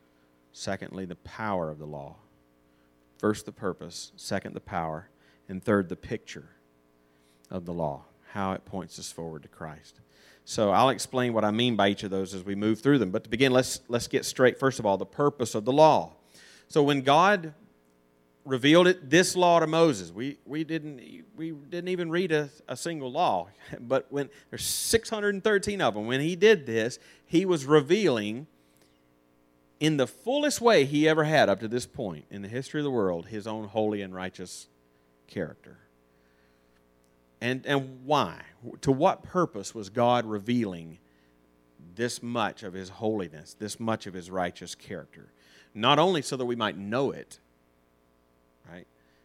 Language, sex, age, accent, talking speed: English, male, 40-59, American, 170 wpm